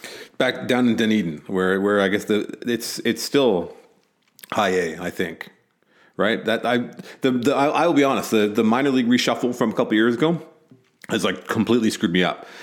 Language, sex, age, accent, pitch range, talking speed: English, male, 40-59, American, 95-120 Hz, 205 wpm